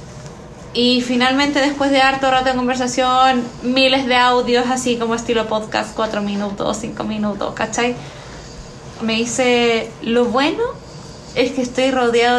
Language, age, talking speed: Spanish, 20-39, 135 wpm